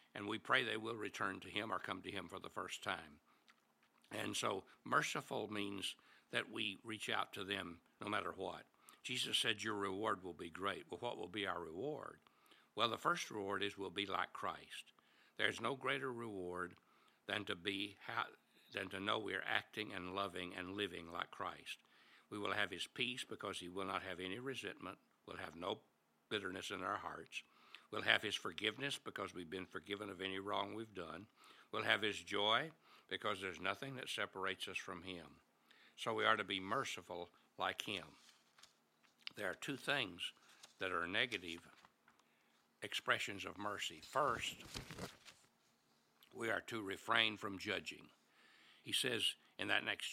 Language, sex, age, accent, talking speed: English, male, 60-79, American, 170 wpm